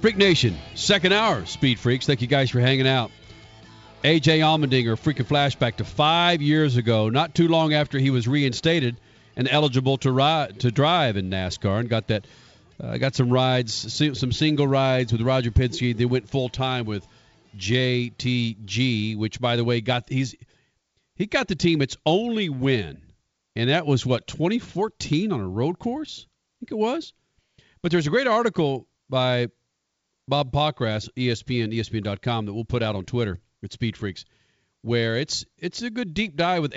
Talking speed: 175 wpm